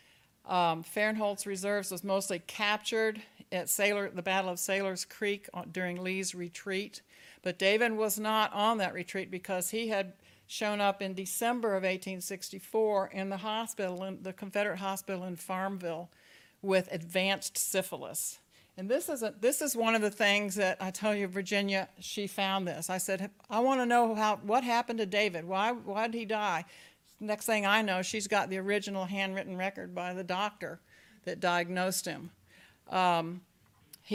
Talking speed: 165 wpm